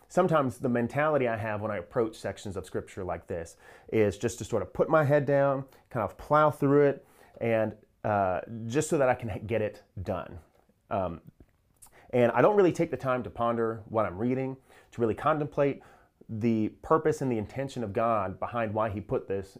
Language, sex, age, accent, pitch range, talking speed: English, male, 30-49, American, 110-145 Hz, 200 wpm